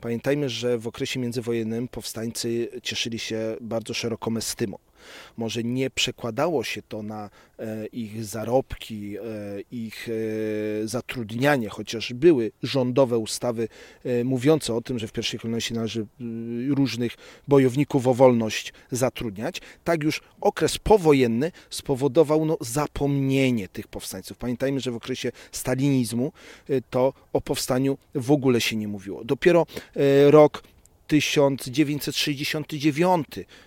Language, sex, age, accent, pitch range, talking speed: Polish, male, 40-59, native, 115-150 Hz, 125 wpm